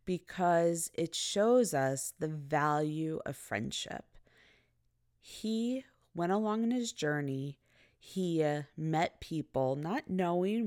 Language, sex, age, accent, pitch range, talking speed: English, female, 20-39, American, 145-180 Hz, 110 wpm